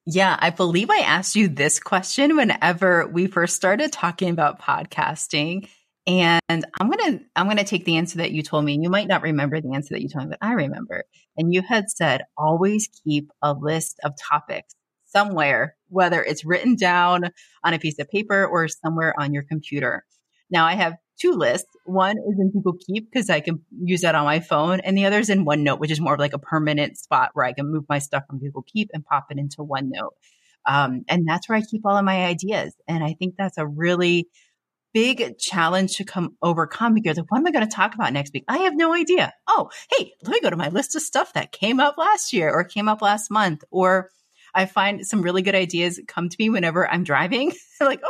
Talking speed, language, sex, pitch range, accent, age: 225 wpm, English, female, 155-205 Hz, American, 30-49